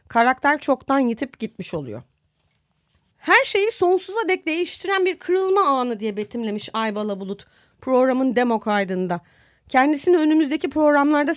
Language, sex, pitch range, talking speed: Turkish, female, 220-345 Hz, 120 wpm